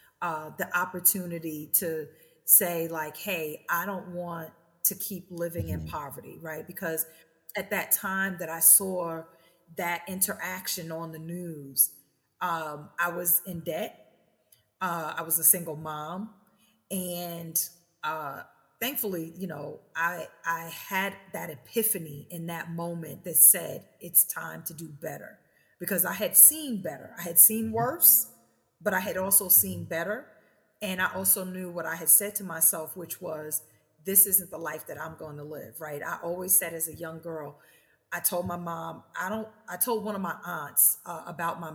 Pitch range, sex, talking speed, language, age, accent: 160-190 Hz, female, 170 wpm, English, 40-59, American